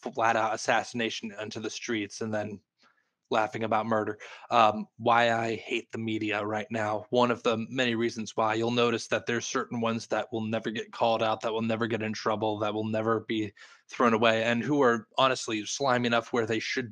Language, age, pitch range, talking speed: English, 20-39, 110-120 Hz, 205 wpm